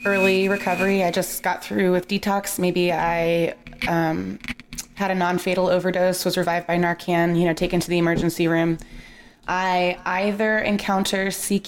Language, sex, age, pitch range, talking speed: English, female, 20-39, 165-185 Hz, 155 wpm